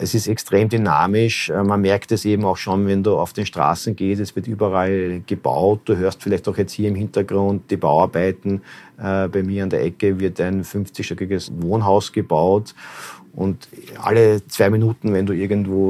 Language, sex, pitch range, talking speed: German, male, 95-110 Hz, 175 wpm